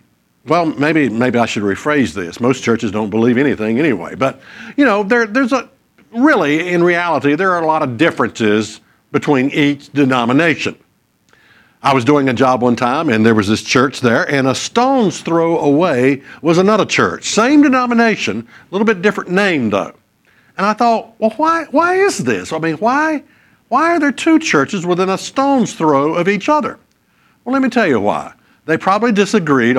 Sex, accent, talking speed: male, American, 185 wpm